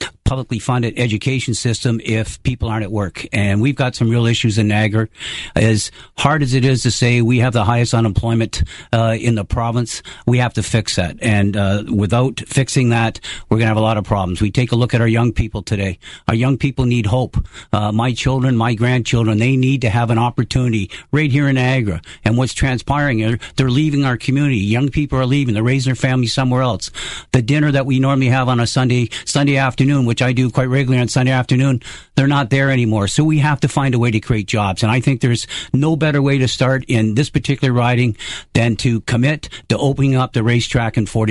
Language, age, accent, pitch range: English, 50-69, American, 115-140 Hz